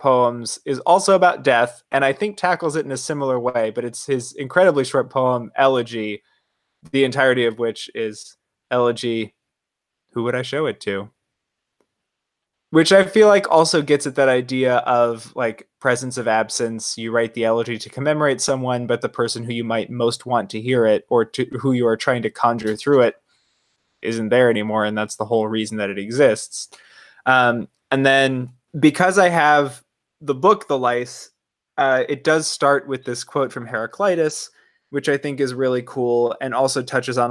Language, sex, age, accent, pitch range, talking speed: English, male, 20-39, American, 115-140 Hz, 185 wpm